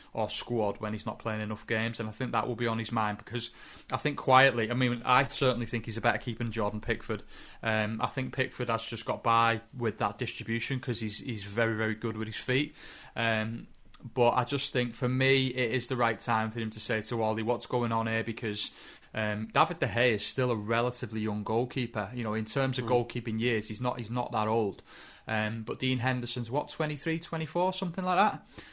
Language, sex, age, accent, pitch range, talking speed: English, male, 20-39, British, 110-130 Hz, 230 wpm